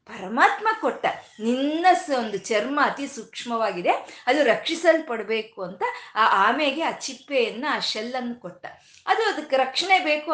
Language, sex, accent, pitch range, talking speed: Kannada, female, native, 205-315 Hz, 120 wpm